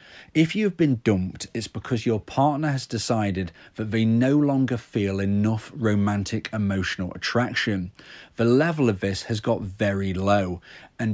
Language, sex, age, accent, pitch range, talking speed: English, male, 30-49, British, 105-135 Hz, 150 wpm